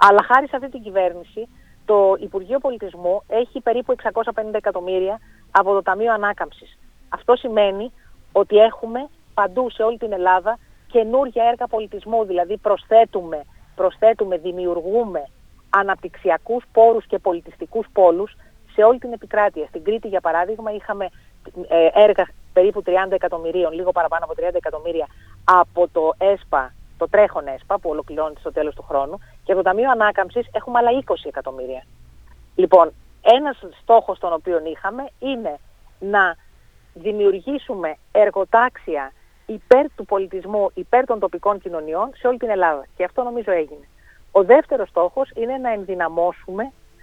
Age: 40-59